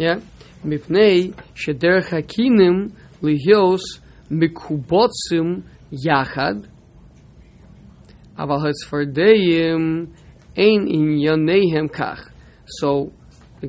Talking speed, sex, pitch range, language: 80 wpm, male, 110-165 Hz, English